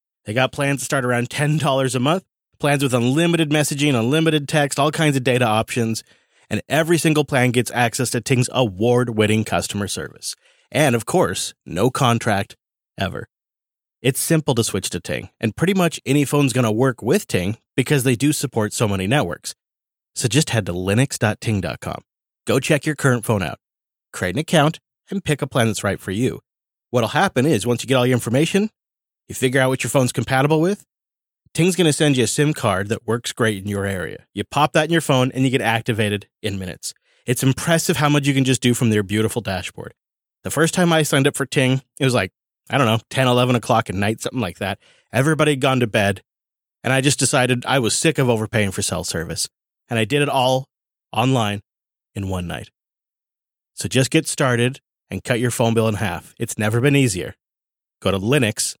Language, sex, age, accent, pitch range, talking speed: English, male, 30-49, American, 110-145 Hz, 205 wpm